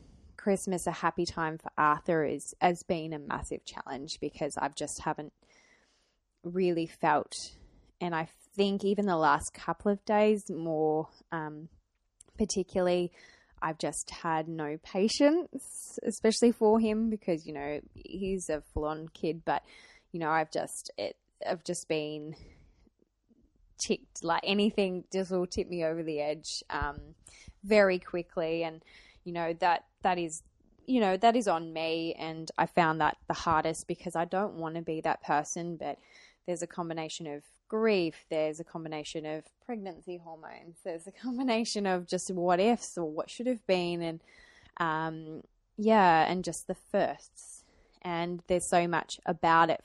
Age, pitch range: 20-39, 160-190 Hz